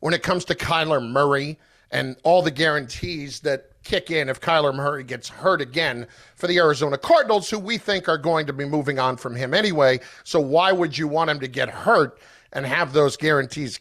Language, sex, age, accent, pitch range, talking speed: English, male, 50-69, American, 145-190 Hz, 210 wpm